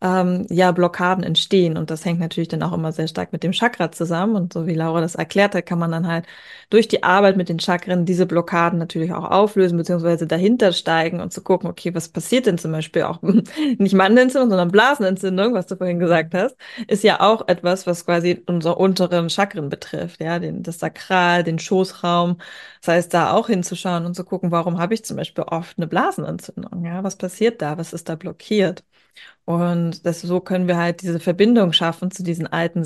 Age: 20-39